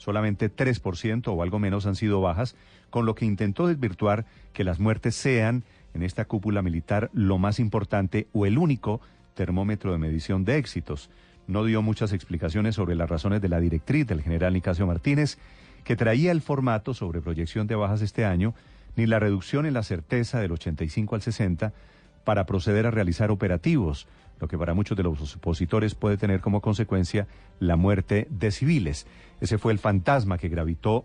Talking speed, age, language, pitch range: 180 wpm, 40-59, Spanish, 90-115 Hz